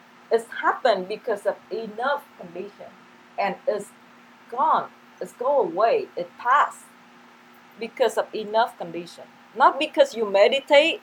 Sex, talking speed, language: female, 120 wpm, English